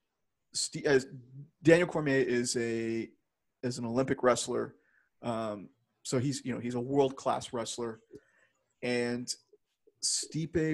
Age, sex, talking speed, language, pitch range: 30-49, male, 125 wpm, English, 120-155 Hz